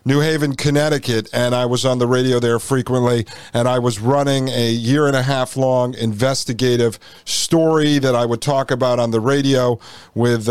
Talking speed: 185 wpm